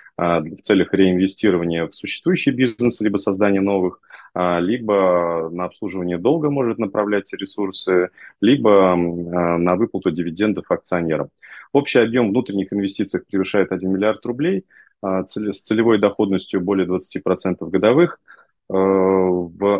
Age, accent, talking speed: 20-39, native, 110 wpm